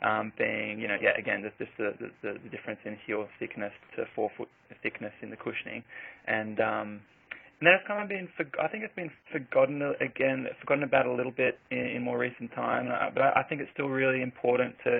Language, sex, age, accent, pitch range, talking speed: English, male, 20-39, Australian, 115-135 Hz, 220 wpm